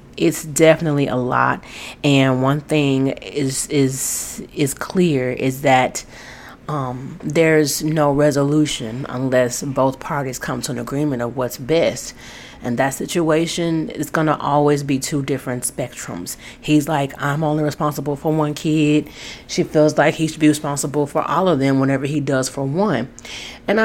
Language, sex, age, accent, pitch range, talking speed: English, female, 30-49, American, 135-170 Hz, 160 wpm